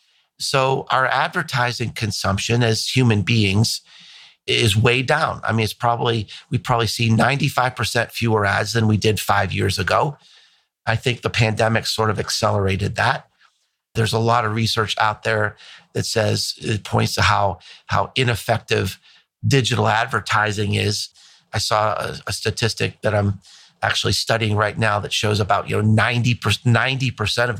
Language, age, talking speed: English, 50-69, 150 wpm